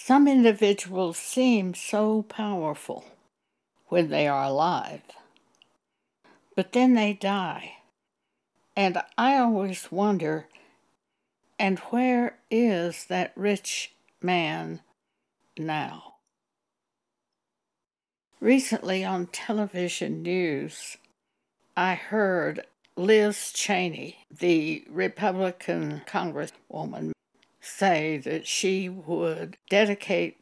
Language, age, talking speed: English, 60-79, 80 wpm